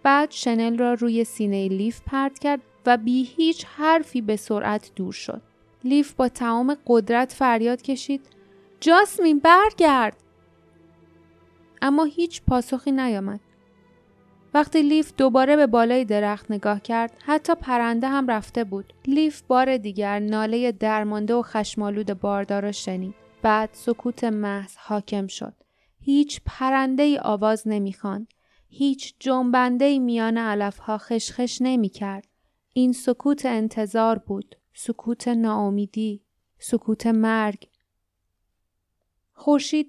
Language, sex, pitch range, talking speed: Persian, female, 210-260 Hz, 115 wpm